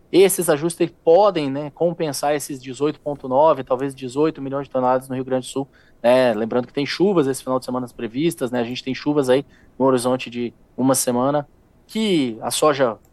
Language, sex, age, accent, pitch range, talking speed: Portuguese, male, 20-39, Brazilian, 125-140 Hz, 185 wpm